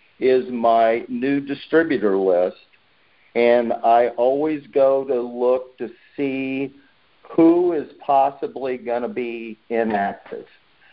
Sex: male